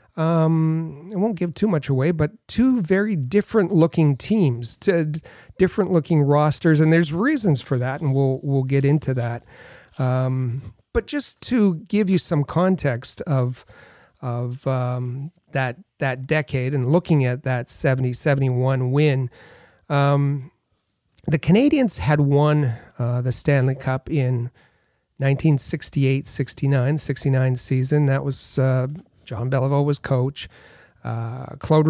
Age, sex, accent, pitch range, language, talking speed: 40-59, male, American, 130-165 Hz, English, 135 wpm